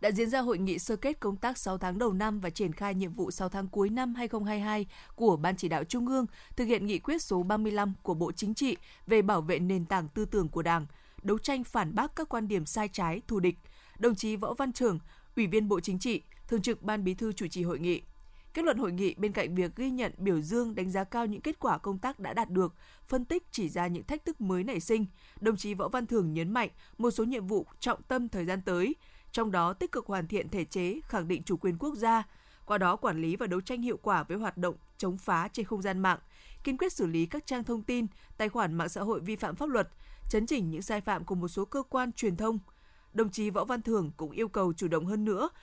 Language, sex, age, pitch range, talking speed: Vietnamese, female, 20-39, 185-235 Hz, 260 wpm